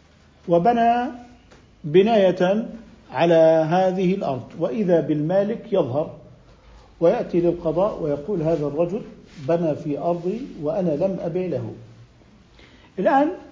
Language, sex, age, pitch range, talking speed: Arabic, male, 50-69, 165-215 Hz, 95 wpm